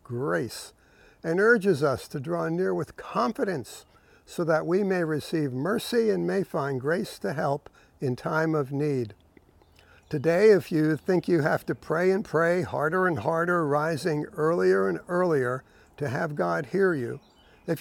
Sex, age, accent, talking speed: male, 60-79, American, 160 wpm